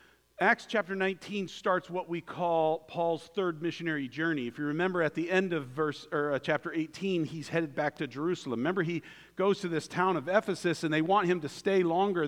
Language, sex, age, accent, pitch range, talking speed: English, male, 50-69, American, 155-195 Hz, 205 wpm